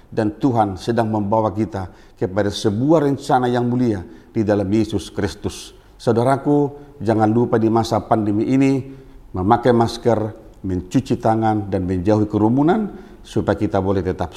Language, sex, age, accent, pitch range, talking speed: Indonesian, male, 50-69, native, 100-130 Hz, 135 wpm